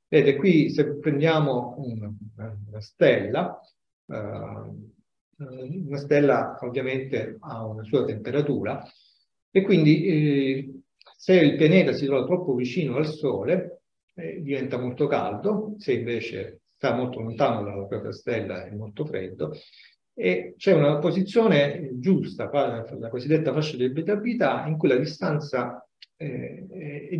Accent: native